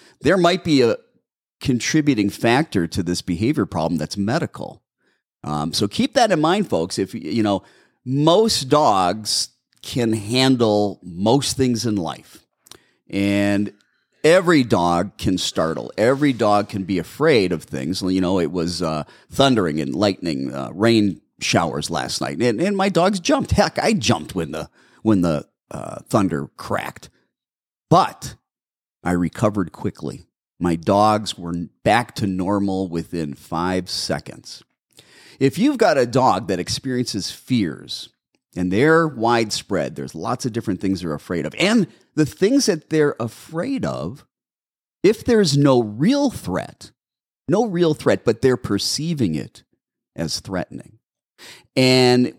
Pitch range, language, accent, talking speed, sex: 95-140 Hz, English, American, 140 wpm, male